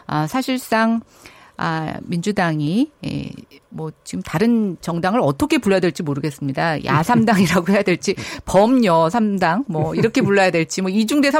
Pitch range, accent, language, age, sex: 160-245 Hz, native, Korean, 50-69, female